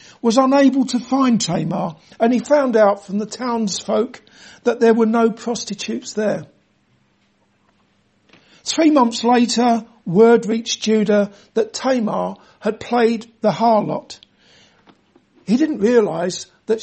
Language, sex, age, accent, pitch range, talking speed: English, male, 60-79, British, 210-255 Hz, 120 wpm